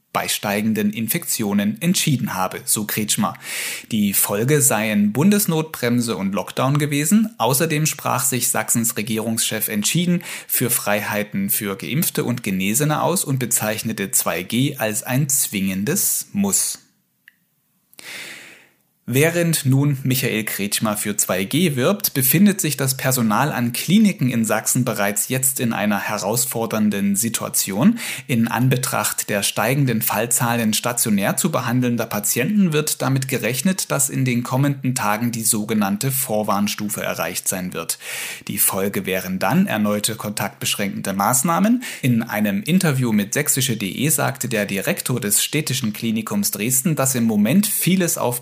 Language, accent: German, German